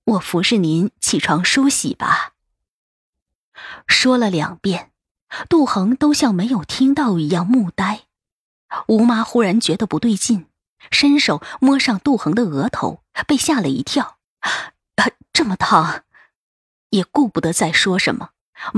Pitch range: 175-240 Hz